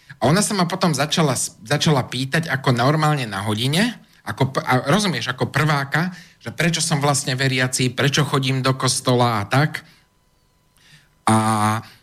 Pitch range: 120-150 Hz